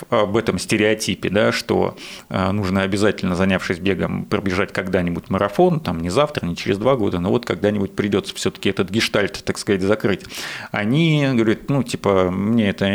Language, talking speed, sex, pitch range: Russian, 160 wpm, male, 95-125 Hz